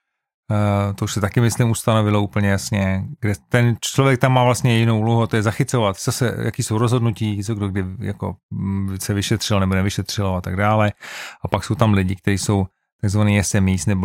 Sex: male